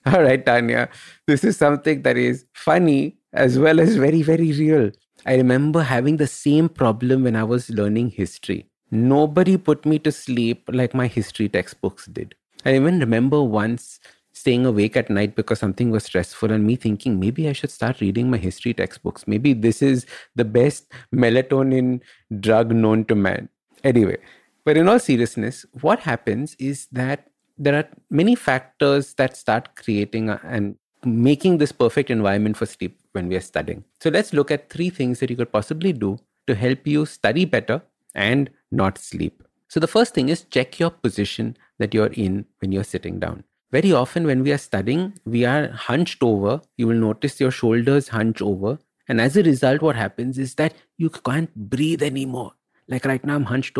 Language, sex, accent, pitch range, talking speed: English, male, Indian, 110-145 Hz, 185 wpm